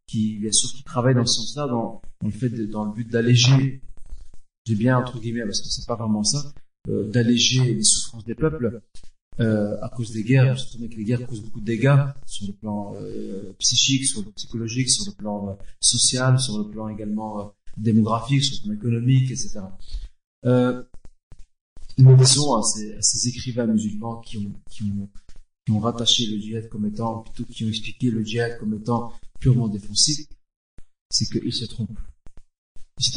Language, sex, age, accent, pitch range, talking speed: French, male, 40-59, French, 105-125 Hz, 195 wpm